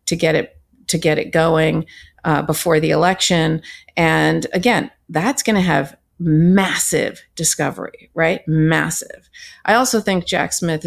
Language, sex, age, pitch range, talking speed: English, female, 40-59, 155-185 Hz, 145 wpm